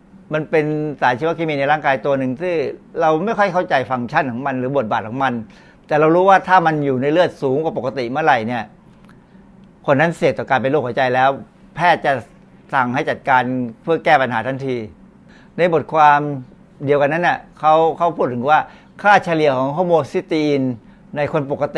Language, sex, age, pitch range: Thai, male, 60-79, 140-190 Hz